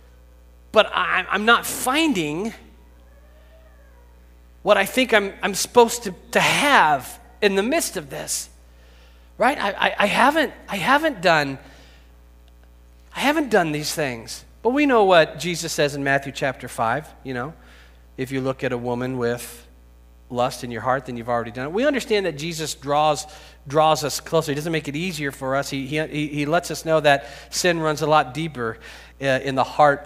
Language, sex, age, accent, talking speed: English, male, 40-59, American, 180 wpm